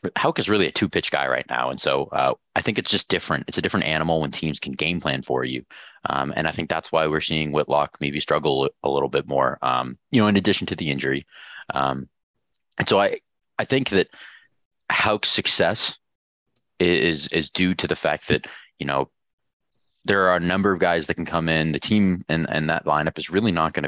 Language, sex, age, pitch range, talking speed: English, male, 30-49, 75-90 Hz, 220 wpm